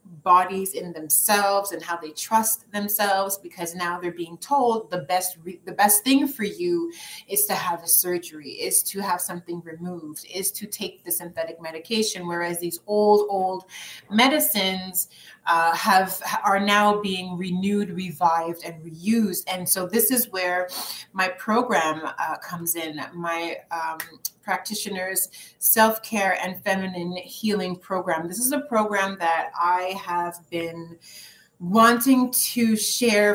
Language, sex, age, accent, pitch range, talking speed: English, female, 30-49, American, 175-210 Hz, 145 wpm